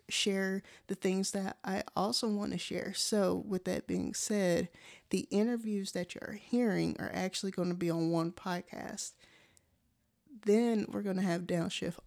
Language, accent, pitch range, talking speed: English, American, 185-215 Hz, 165 wpm